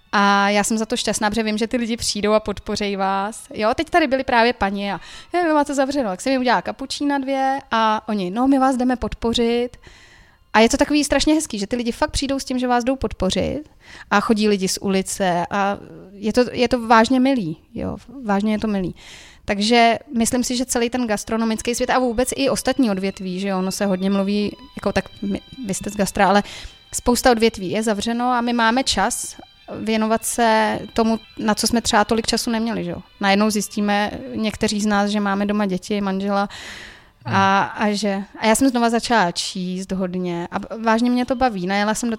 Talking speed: 205 wpm